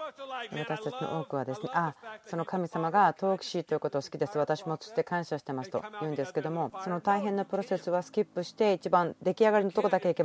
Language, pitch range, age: Japanese, 150-185 Hz, 40-59